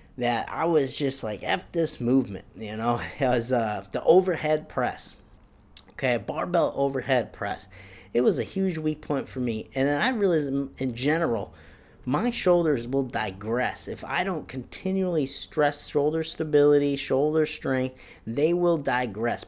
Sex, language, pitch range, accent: male, English, 120-160 Hz, American